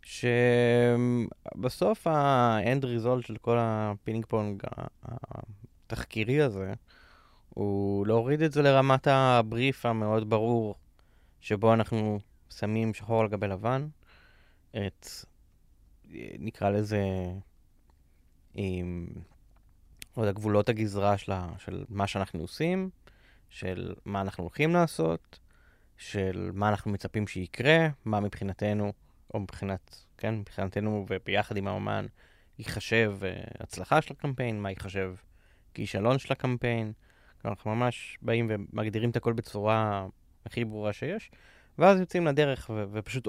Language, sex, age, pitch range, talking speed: Hebrew, male, 20-39, 100-120 Hz, 110 wpm